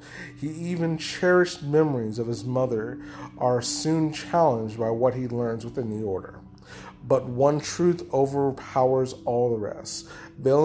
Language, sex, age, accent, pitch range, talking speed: English, male, 30-49, American, 125-165 Hz, 140 wpm